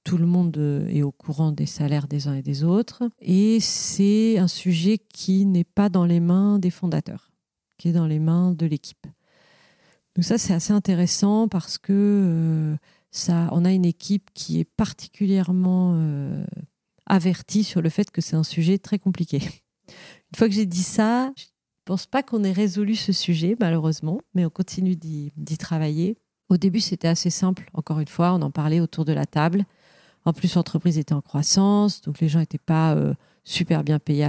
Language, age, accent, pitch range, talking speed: French, 40-59, French, 155-185 Hz, 185 wpm